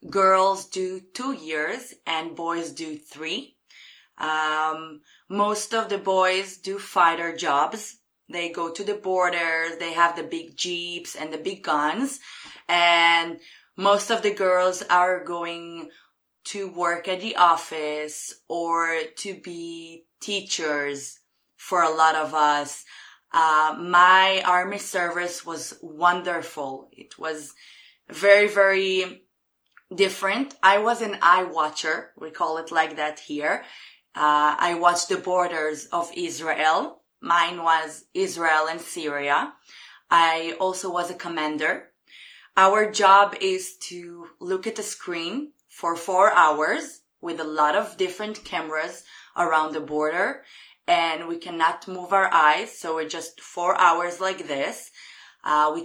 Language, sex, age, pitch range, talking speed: English, female, 20-39, 160-190 Hz, 135 wpm